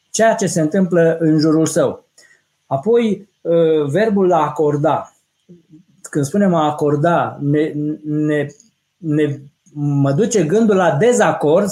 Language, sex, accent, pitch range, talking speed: Romanian, male, native, 150-210 Hz, 120 wpm